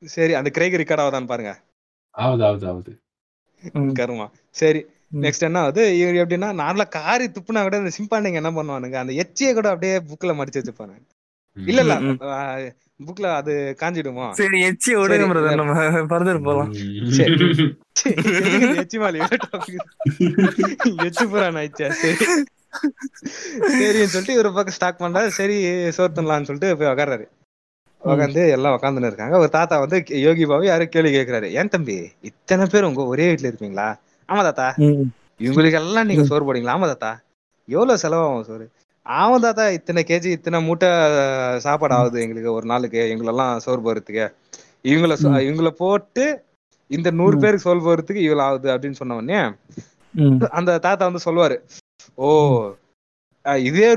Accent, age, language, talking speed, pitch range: native, 20-39, Tamil, 85 wpm, 135-190 Hz